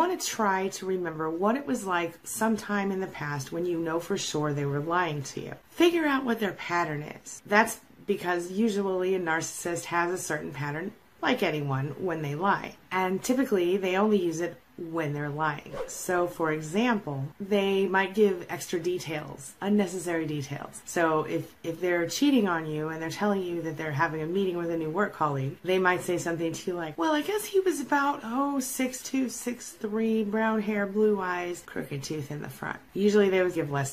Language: English